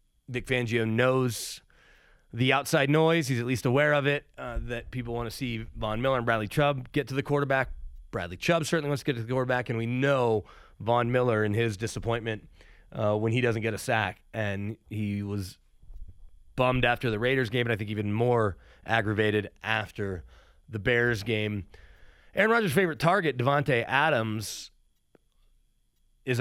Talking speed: 175 wpm